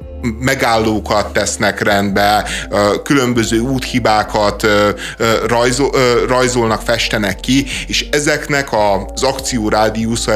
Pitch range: 105-120 Hz